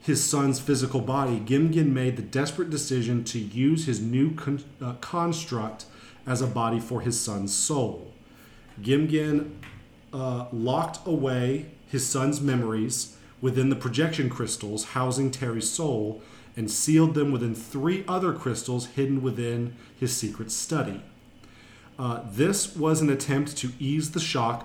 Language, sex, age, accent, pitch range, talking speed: English, male, 40-59, American, 115-145 Hz, 140 wpm